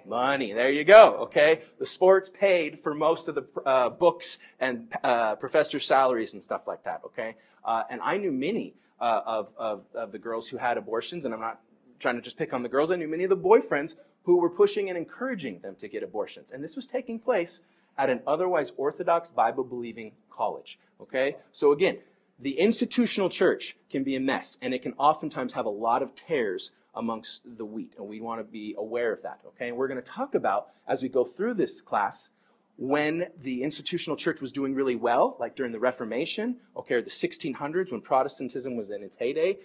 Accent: American